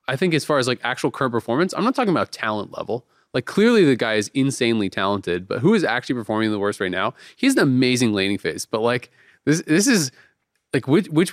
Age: 20-39